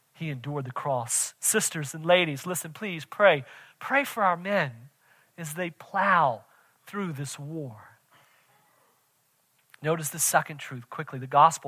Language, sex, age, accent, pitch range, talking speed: English, male, 40-59, American, 160-225 Hz, 140 wpm